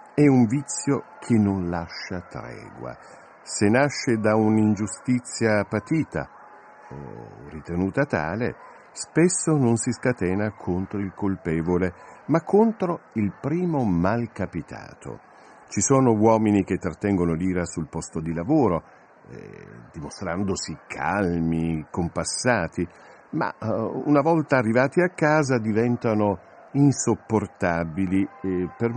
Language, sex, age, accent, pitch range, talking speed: Italian, male, 60-79, native, 95-140 Hz, 105 wpm